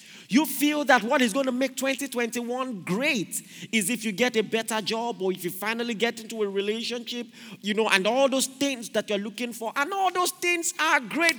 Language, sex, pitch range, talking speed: English, male, 220-330 Hz, 215 wpm